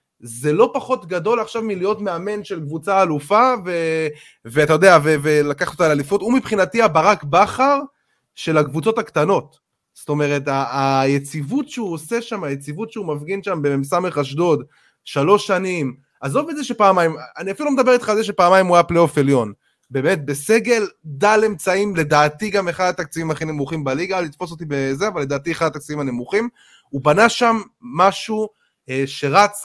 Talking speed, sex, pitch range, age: 155 wpm, male, 150-205 Hz, 20-39